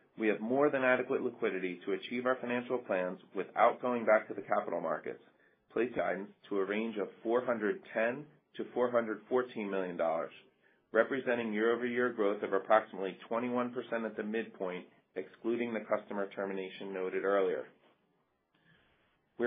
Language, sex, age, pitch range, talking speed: English, male, 40-59, 100-120 Hz, 135 wpm